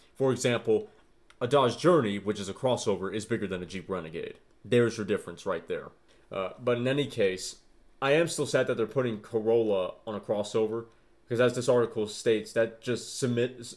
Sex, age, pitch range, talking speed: male, 30-49, 105-135 Hz, 190 wpm